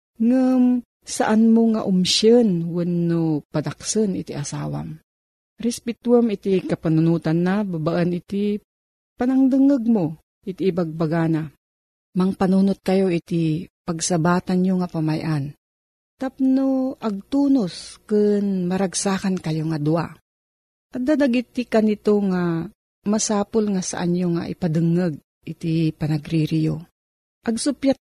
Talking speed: 100 wpm